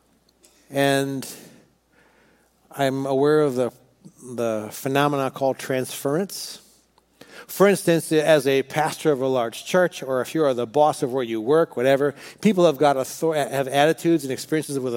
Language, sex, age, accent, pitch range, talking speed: English, male, 60-79, American, 135-165 Hz, 150 wpm